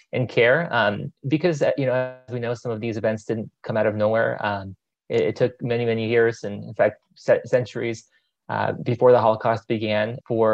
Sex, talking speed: male, 205 wpm